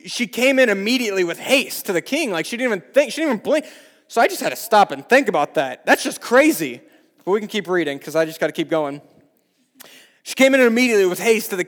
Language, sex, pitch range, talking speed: English, male, 165-245 Hz, 265 wpm